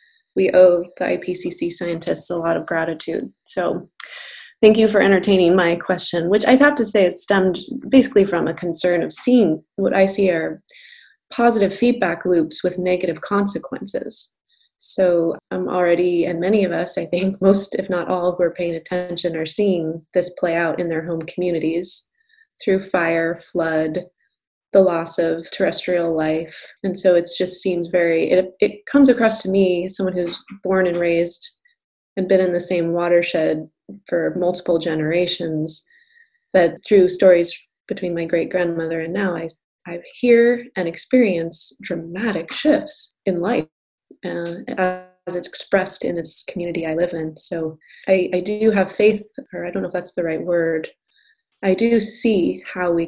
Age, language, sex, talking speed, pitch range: 20-39, English, female, 165 wpm, 170-200 Hz